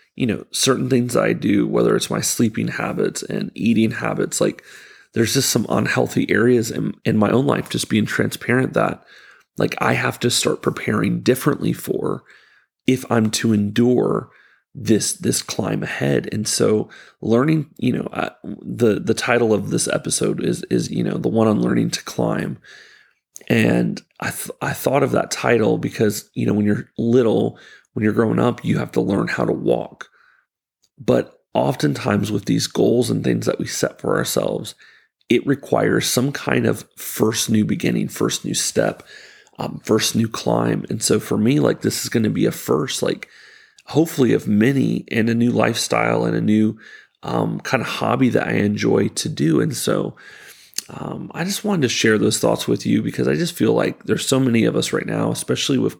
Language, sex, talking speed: English, male, 190 wpm